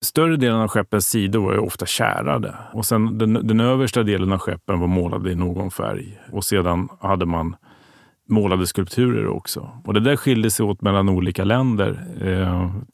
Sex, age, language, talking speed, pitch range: male, 30-49, Swedish, 175 wpm, 95-115 Hz